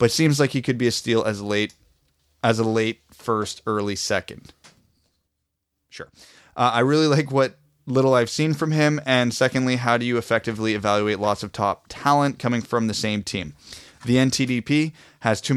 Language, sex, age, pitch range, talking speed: English, male, 30-49, 105-130 Hz, 180 wpm